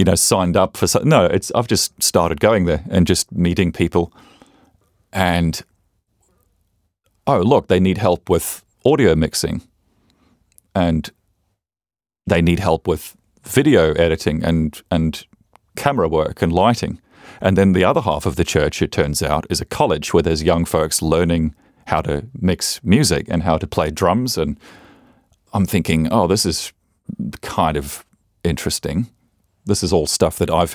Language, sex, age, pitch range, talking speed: English, male, 40-59, 80-100 Hz, 160 wpm